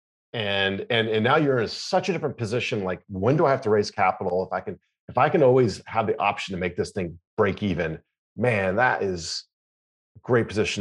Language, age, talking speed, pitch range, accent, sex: English, 40-59, 220 wpm, 100-135 Hz, American, male